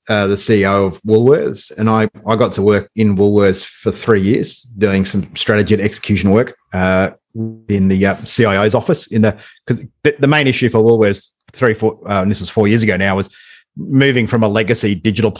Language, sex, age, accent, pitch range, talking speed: English, male, 30-49, Australian, 105-125 Hz, 205 wpm